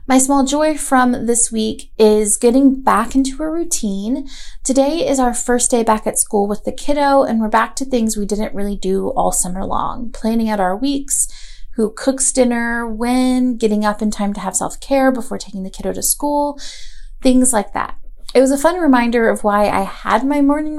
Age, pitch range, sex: 30-49, 215-270 Hz, female